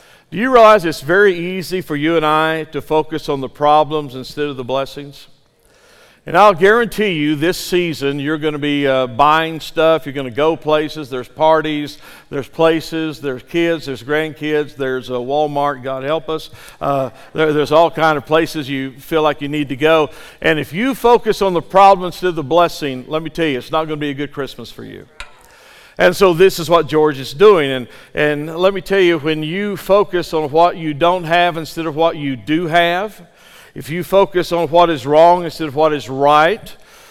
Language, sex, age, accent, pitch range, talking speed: English, male, 50-69, American, 145-170 Hz, 210 wpm